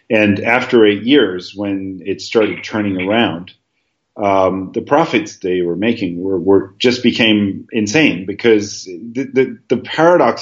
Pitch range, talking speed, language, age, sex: 100-120 Hz, 145 wpm, English, 30-49, male